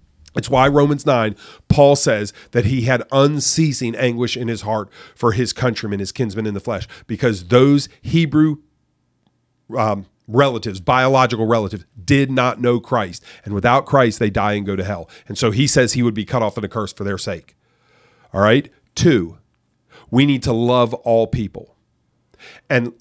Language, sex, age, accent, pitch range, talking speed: English, male, 40-59, American, 110-140 Hz, 175 wpm